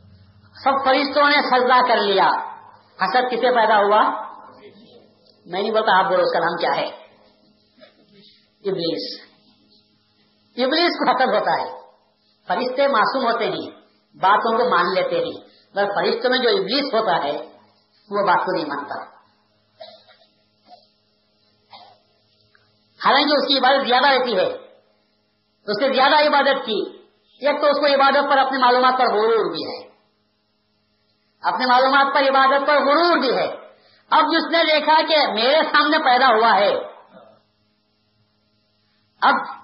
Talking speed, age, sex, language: 125 wpm, 50-69, female, Urdu